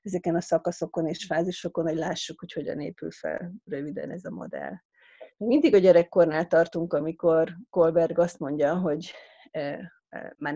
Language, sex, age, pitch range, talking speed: Hungarian, female, 30-49, 165-200 Hz, 140 wpm